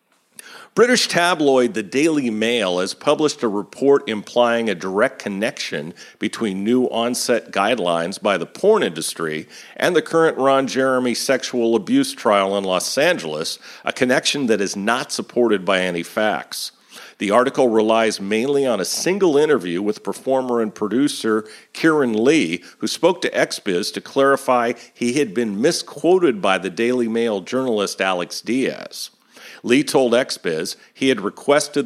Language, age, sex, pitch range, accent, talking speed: English, 50-69, male, 105-135 Hz, American, 145 wpm